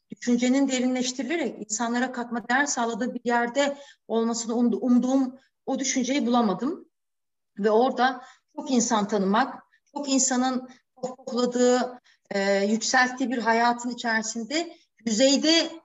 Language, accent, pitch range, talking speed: Turkish, native, 220-265 Hz, 105 wpm